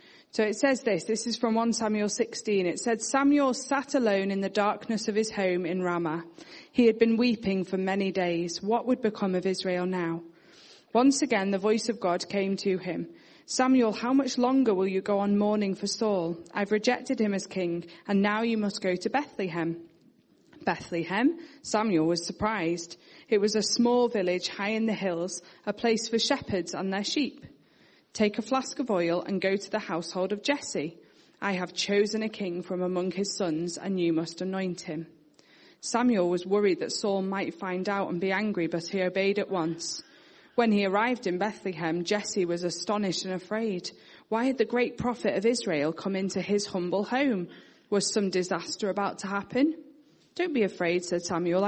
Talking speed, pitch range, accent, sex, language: 190 wpm, 180-230 Hz, British, female, English